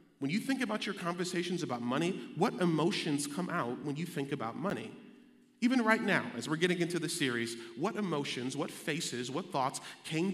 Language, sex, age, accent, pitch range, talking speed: English, male, 30-49, American, 135-190 Hz, 190 wpm